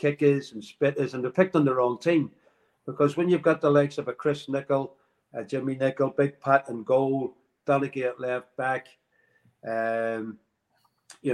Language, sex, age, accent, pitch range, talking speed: English, male, 50-69, British, 120-140 Hz, 180 wpm